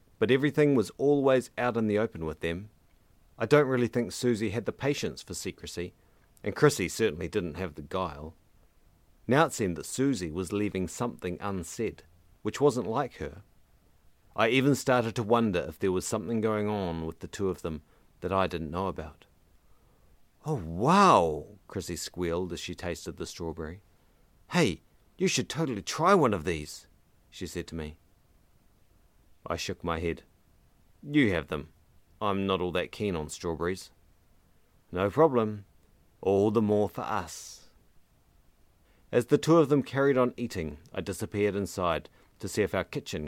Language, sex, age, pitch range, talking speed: English, male, 40-59, 85-115 Hz, 165 wpm